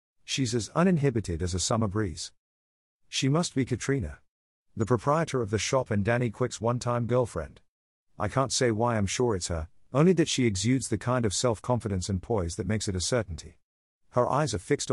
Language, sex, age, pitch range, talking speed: English, male, 50-69, 85-125 Hz, 195 wpm